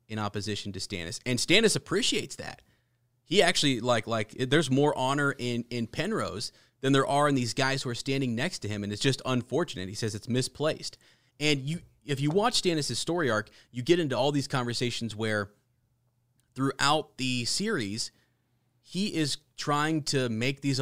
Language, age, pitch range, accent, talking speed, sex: English, 30-49, 105-130 Hz, American, 180 wpm, male